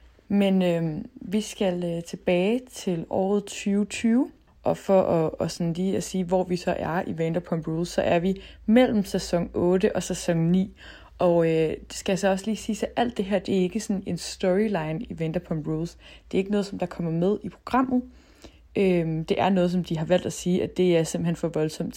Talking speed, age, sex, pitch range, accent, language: 220 wpm, 20-39, female, 165-210 Hz, native, Danish